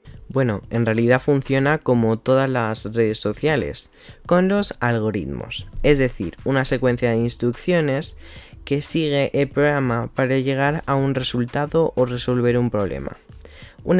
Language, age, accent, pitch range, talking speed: Spanish, 10-29, Spanish, 115-155 Hz, 135 wpm